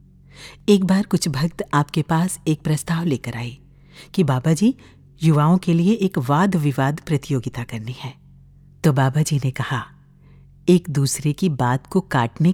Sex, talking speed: female, 160 wpm